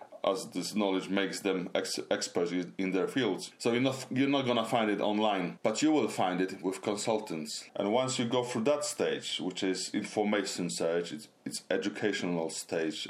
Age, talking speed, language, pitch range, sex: 30-49, 185 wpm, English, 95-115 Hz, male